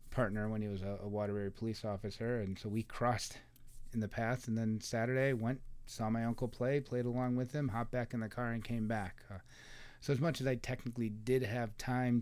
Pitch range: 105-125 Hz